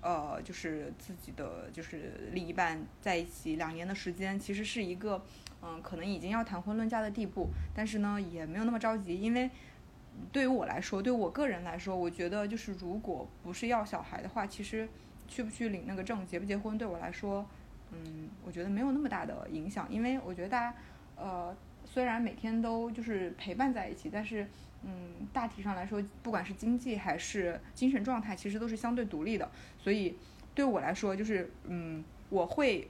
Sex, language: female, Chinese